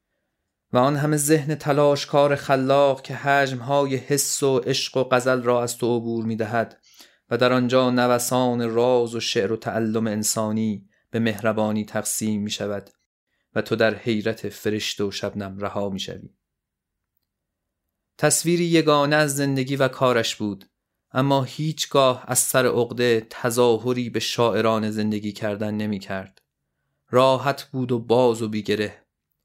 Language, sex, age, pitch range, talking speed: Persian, male, 30-49, 110-130 Hz, 140 wpm